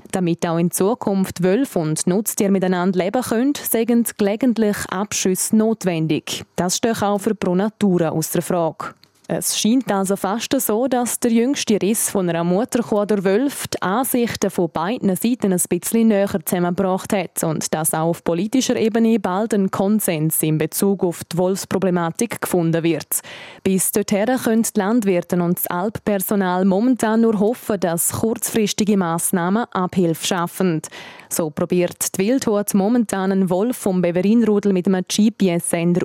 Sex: female